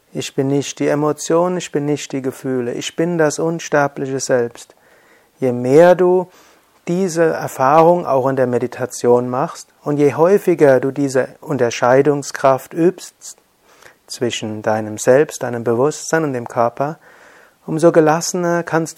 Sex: male